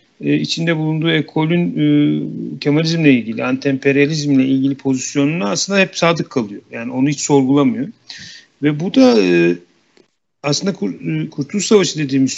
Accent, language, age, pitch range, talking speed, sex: native, Turkish, 50-69, 130-165 Hz, 130 wpm, male